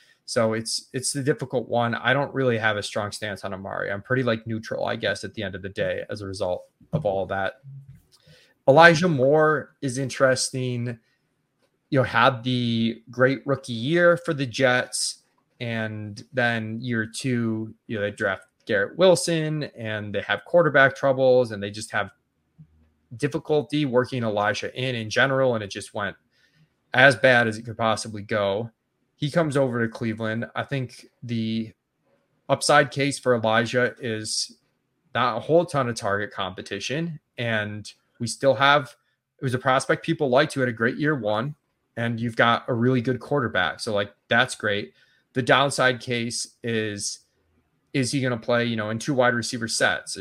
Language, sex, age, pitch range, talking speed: English, male, 20-39, 110-135 Hz, 175 wpm